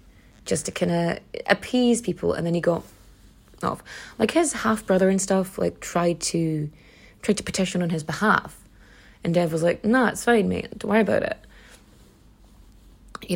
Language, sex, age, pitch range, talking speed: English, female, 30-49, 170-215 Hz, 175 wpm